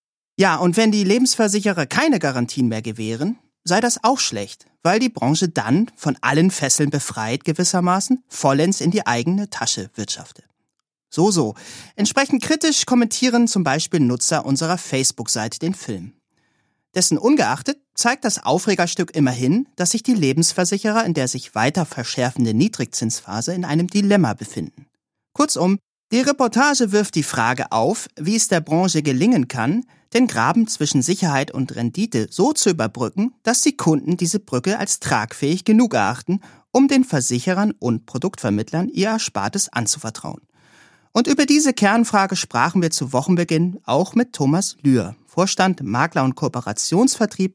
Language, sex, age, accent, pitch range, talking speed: German, male, 30-49, German, 135-220 Hz, 145 wpm